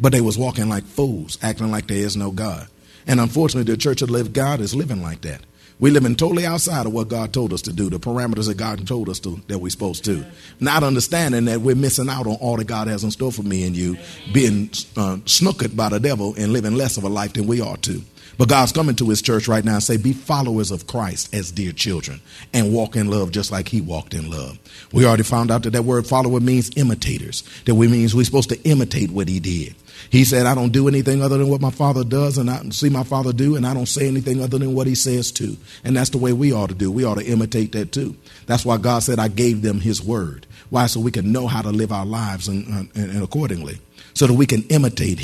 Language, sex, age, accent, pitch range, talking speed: English, male, 50-69, American, 105-130 Hz, 260 wpm